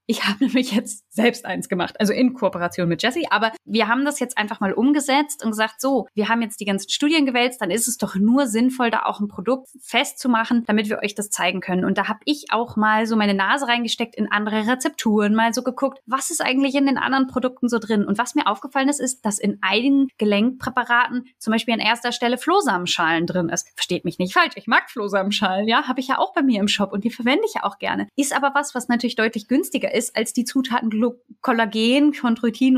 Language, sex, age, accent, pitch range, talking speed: German, female, 20-39, German, 210-260 Hz, 235 wpm